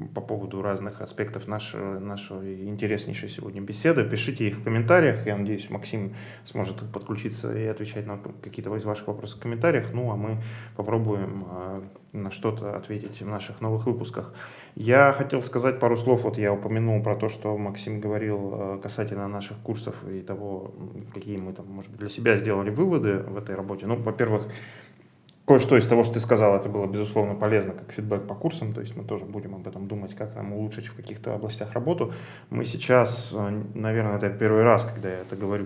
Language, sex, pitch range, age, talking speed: Russian, male, 100-115 Hz, 20-39, 185 wpm